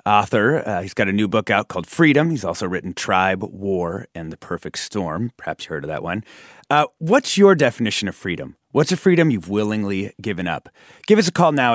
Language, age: English, 30-49